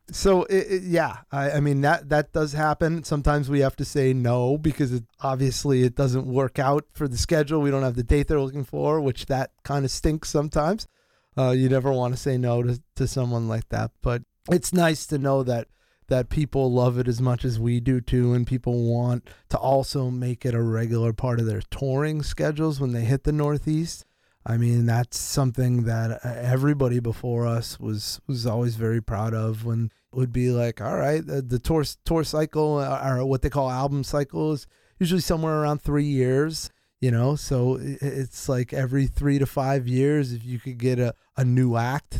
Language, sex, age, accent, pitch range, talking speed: English, male, 30-49, American, 125-145 Hz, 200 wpm